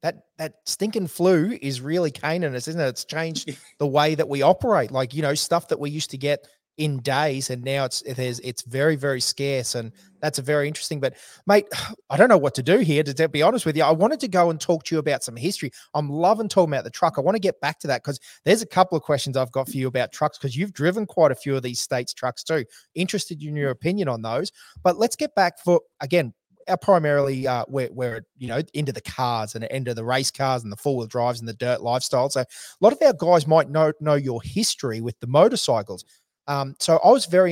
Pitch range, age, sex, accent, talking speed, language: 130-170 Hz, 20-39, male, Australian, 255 wpm, English